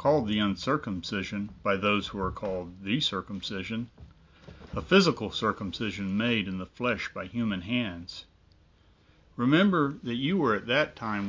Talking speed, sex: 145 wpm, male